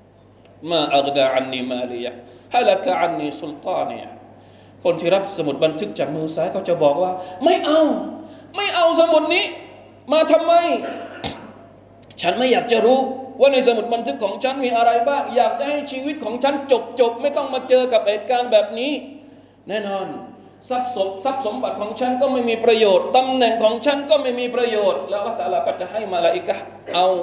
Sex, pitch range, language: male, 155-255 Hz, Thai